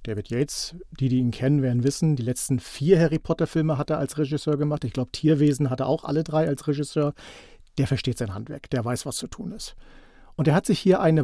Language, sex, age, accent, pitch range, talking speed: German, male, 40-59, German, 130-160 Hz, 230 wpm